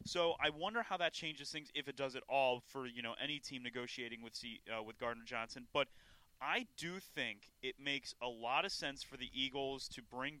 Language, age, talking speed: English, 30-49, 225 wpm